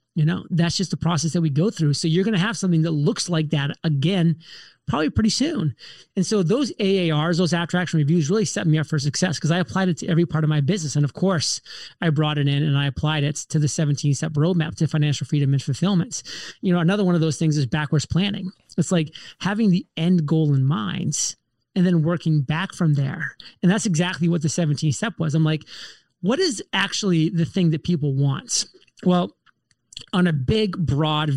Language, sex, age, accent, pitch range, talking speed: English, male, 30-49, American, 155-190 Hz, 220 wpm